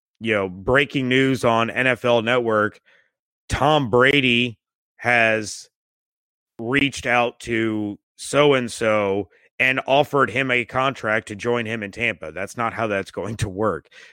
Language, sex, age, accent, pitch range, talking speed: English, male, 30-49, American, 110-130 Hz, 130 wpm